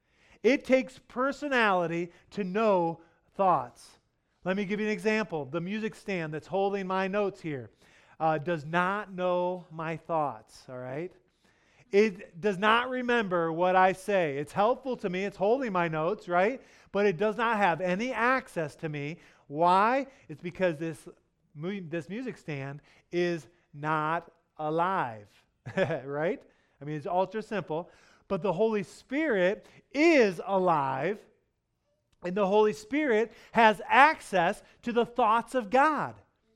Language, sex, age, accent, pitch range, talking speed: English, male, 30-49, American, 165-225 Hz, 140 wpm